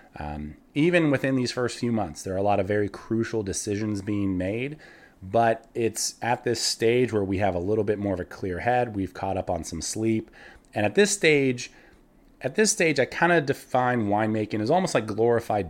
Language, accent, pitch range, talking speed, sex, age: English, American, 100-120 Hz, 210 wpm, male, 30-49